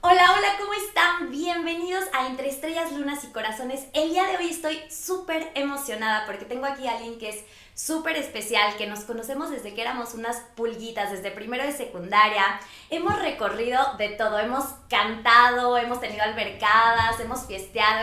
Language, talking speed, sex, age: Spanish, 165 wpm, female, 20-39